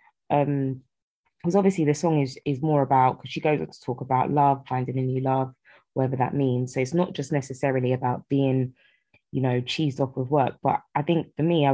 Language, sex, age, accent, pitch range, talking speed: English, female, 20-39, British, 130-150 Hz, 220 wpm